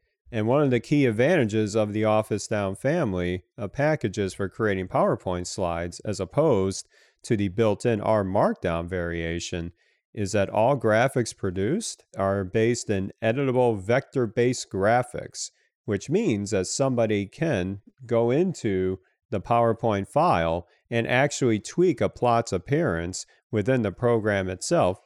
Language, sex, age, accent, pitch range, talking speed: English, male, 40-59, American, 100-125 Hz, 135 wpm